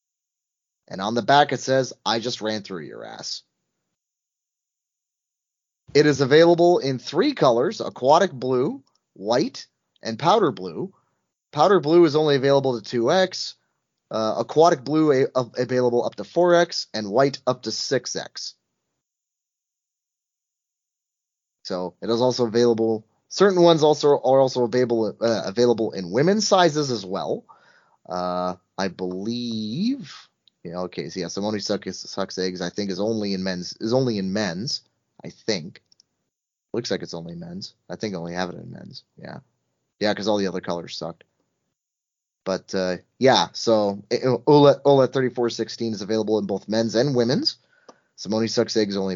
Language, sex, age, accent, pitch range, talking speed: English, male, 30-49, American, 100-135 Hz, 155 wpm